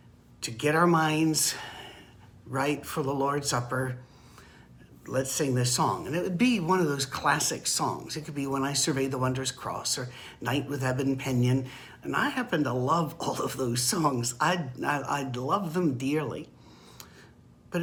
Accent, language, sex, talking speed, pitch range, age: American, English, male, 170 wpm, 125-165 Hz, 60-79